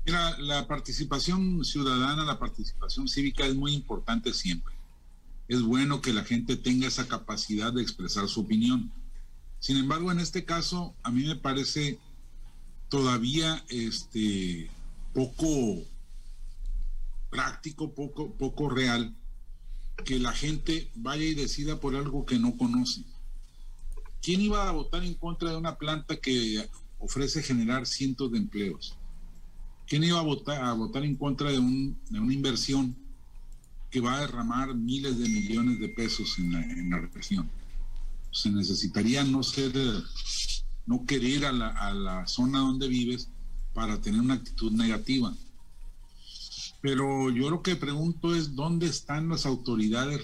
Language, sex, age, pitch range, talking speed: Spanish, male, 50-69, 110-150 Hz, 135 wpm